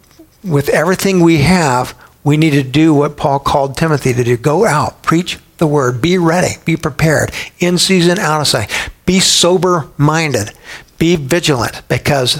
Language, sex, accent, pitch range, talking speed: English, male, American, 135-165 Hz, 165 wpm